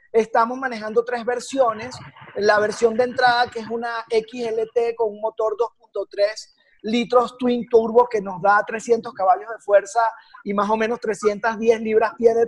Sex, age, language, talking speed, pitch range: male, 30-49, Spanish, 160 wpm, 215-250 Hz